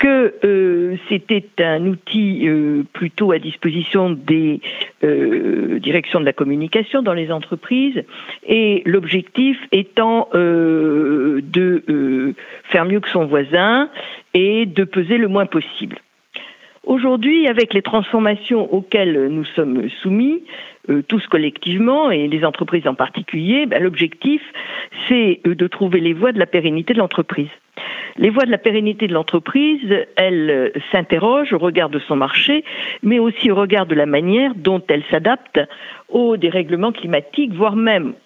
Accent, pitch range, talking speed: French, 165-245 Hz, 145 wpm